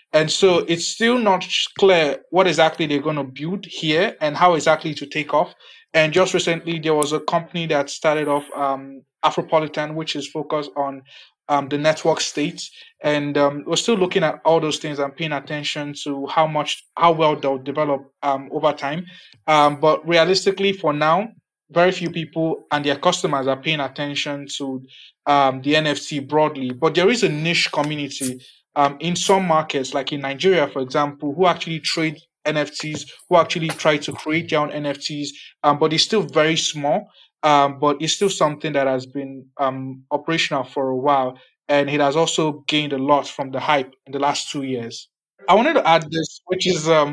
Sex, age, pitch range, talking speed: male, 20-39, 140-165 Hz, 190 wpm